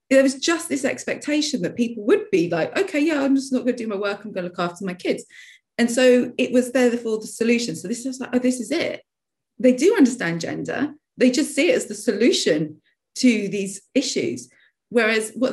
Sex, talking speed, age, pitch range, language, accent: female, 230 wpm, 30-49, 175-255 Hz, English, British